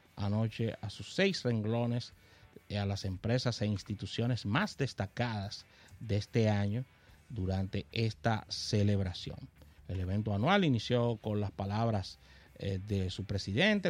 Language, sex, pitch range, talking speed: Spanish, male, 100-115 Hz, 130 wpm